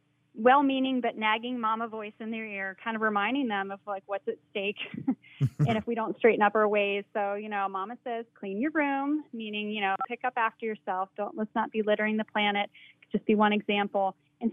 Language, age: English, 30-49